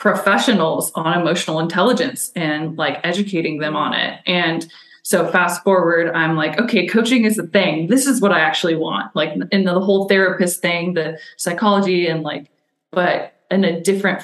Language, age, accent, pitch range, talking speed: English, 20-39, American, 165-195 Hz, 175 wpm